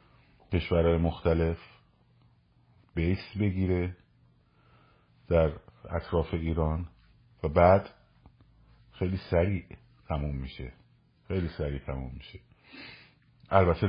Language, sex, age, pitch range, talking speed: Persian, male, 50-69, 75-95 Hz, 80 wpm